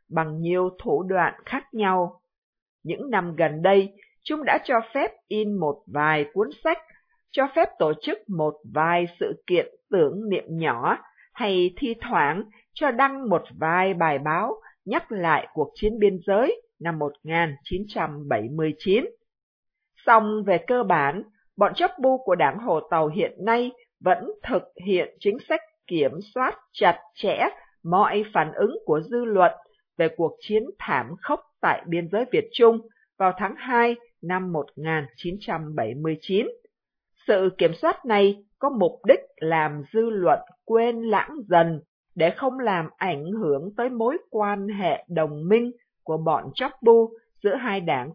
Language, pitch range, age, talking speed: Vietnamese, 170-260 Hz, 50-69, 150 wpm